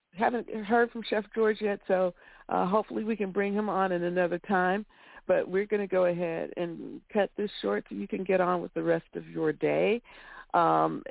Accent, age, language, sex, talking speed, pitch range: American, 50-69, English, female, 210 wpm, 140-200 Hz